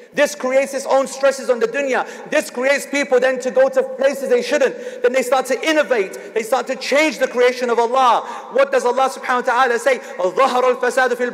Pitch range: 235-285 Hz